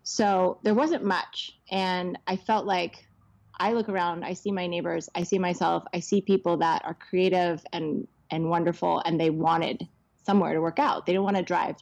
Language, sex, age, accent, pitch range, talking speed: English, female, 20-39, American, 165-205 Hz, 205 wpm